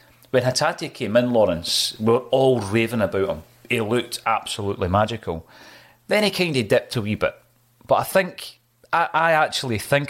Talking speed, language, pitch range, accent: 180 wpm, English, 105-125 Hz, British